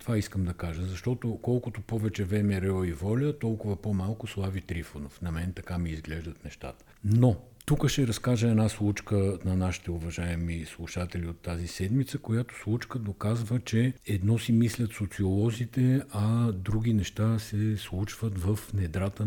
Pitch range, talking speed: 95-120 Hz, 155 wpm